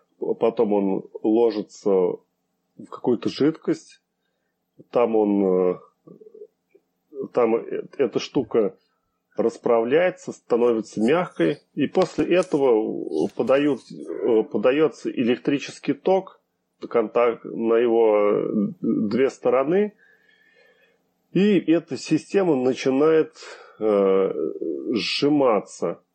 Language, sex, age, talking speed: Russian, male, 30-49, 65 wpm